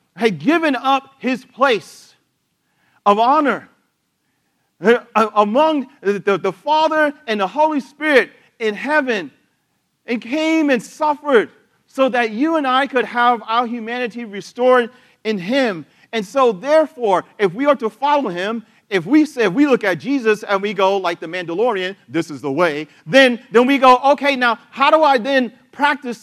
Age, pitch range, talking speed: 40-59, 210-280 Hz, 160 wpm